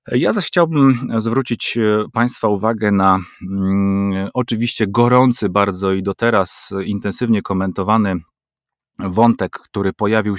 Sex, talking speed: male, 105 wpm